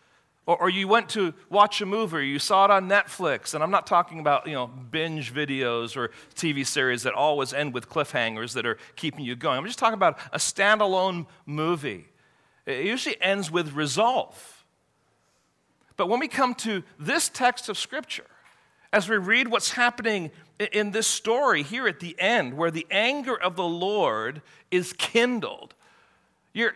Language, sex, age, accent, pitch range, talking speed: English, male, 40-59, American, 170-230 Hz, 170 wpm